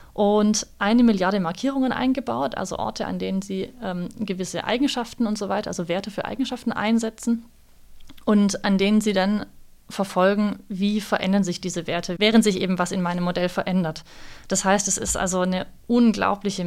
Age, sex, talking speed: 30-49, female, 170 wpm